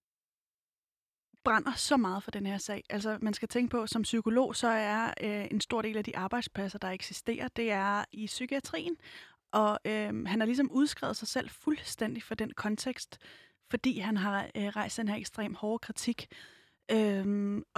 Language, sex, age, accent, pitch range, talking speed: Danish, female, 20-39, native, 210-250 Hz, 180 wpm